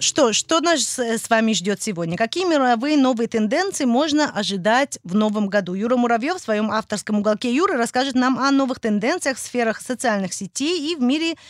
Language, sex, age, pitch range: Russian, female, 20-39, 205-275 Hz